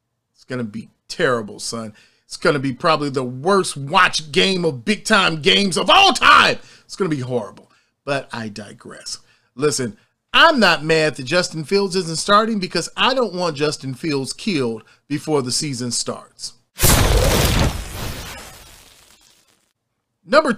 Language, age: English, 40-59